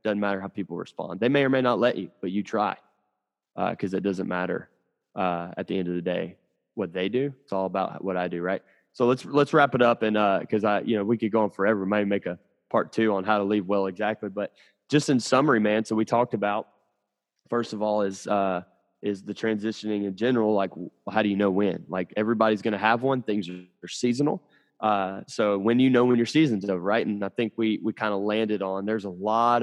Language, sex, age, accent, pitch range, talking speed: English, male, 20-39, American, 100-115 Hz, 245 wpm